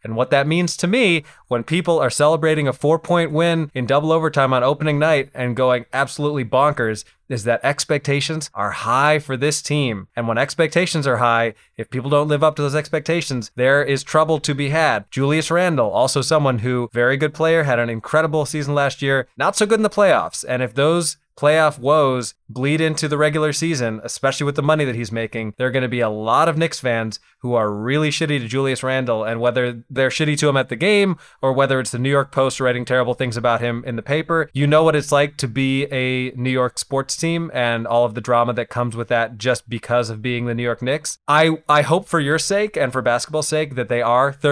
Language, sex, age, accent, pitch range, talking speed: English, male, 20-39, American, 120-155 Hz, 230 wpm